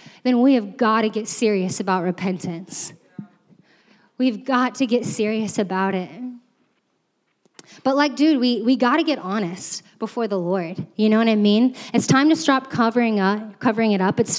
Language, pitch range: English, 210-275 Hz